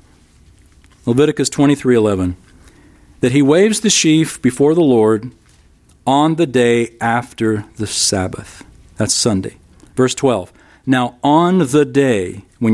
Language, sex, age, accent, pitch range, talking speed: English, male, 40-59, American, 105-145 Hz, 120 wpm